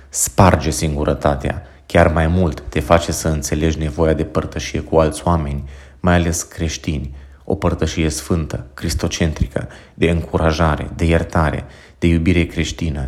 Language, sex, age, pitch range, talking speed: Romanian, male, 30-49, 75-85 Hz, 135 wpm